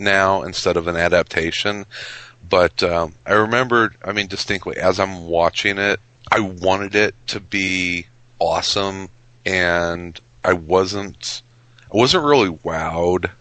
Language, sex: English, male